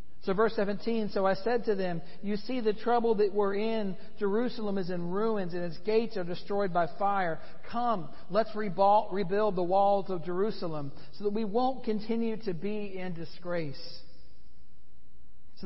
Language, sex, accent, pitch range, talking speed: English, male, American, 165-210 Hz, 165 wpm